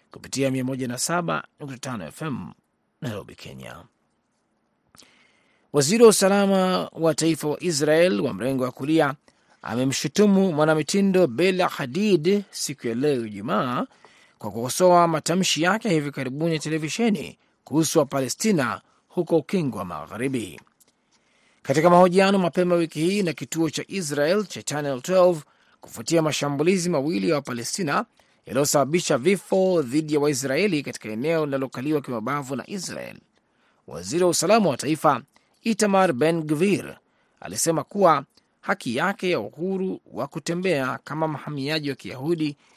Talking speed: 120 wpm